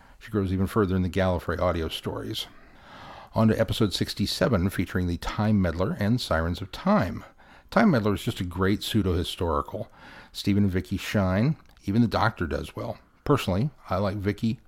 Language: English